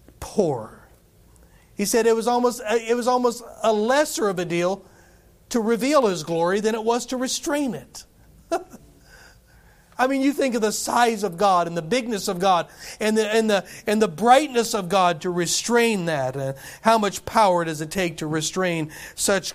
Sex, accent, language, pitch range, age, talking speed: male, American, English, 175-230 Hz, 40-59, 185 wpm